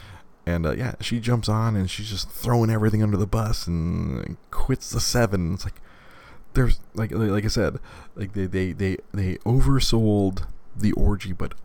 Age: 30-49